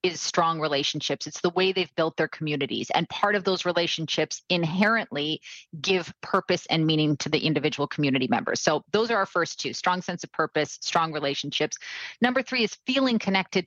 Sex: female